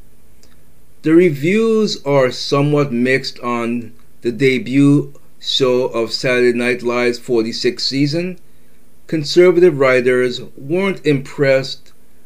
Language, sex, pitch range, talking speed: English, male, 125-165 Hz, 95 wpm